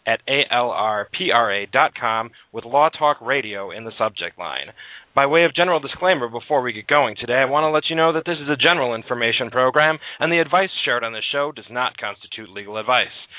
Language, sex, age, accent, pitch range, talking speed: English, male, 30-49, American, 115-150 Hz, 200 wpm